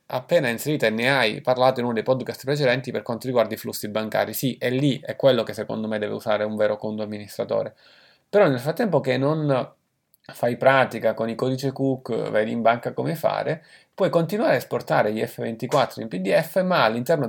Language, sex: Italian, male